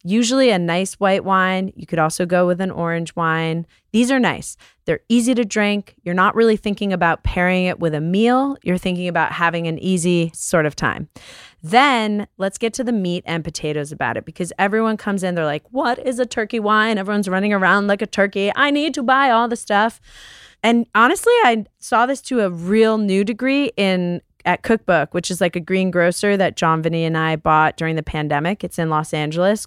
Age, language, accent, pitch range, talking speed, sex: 20-39, English, American, 170-220 Hz, 210 wpm, female